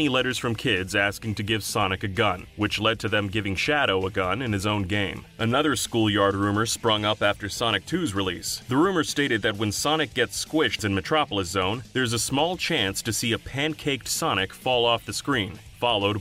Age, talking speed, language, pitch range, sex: 30-49, 205 wpm, English, 100-120 Hz, male